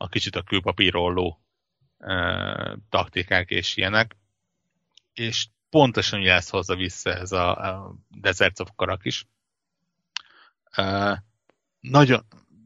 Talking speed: 105 wpm